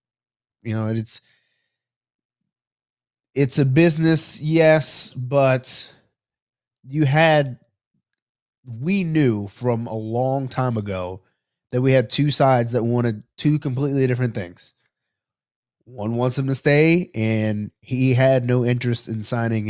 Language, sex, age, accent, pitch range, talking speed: English, male, 30-49, American, 110-130 Hz, 120 wpm